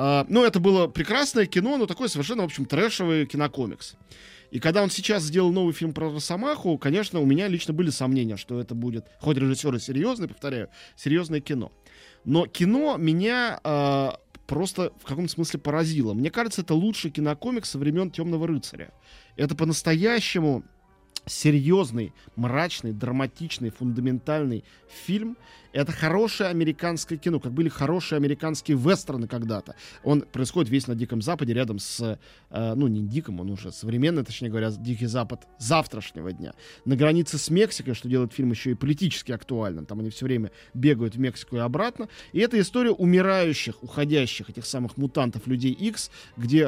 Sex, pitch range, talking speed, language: male, 125-170 Hz, 160 wpm, Russian